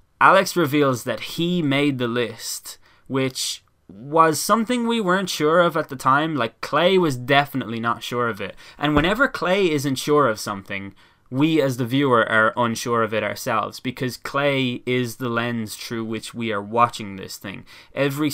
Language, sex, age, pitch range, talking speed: English, male, 10-29, 110-140 Hz, 175 wpm